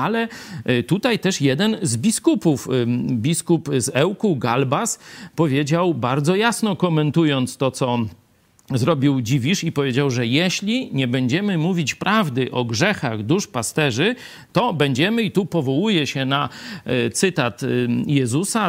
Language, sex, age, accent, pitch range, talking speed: Polish, male, 50-69, native, 140-200 Hz, 125 wpm